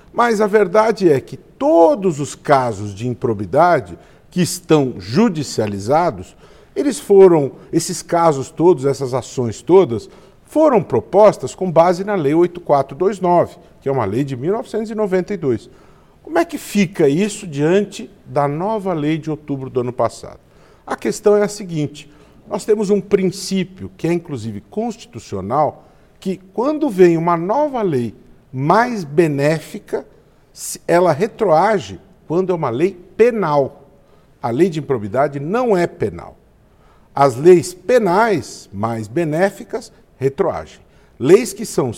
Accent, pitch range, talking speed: Brazilian, 135-195 Hz, 130 wpm